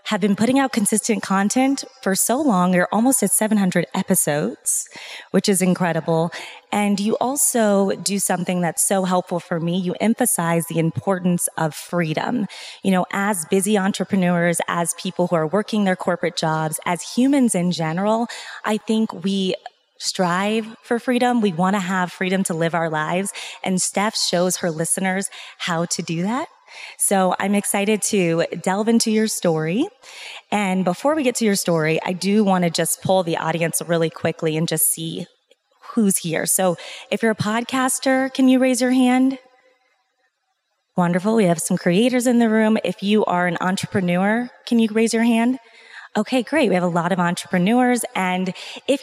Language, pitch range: English, 175-225 Hz